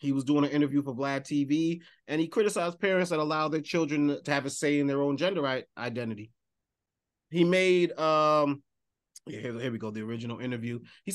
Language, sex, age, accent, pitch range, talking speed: English, male, 30-49, American, 130-165 Hz, 200 wpm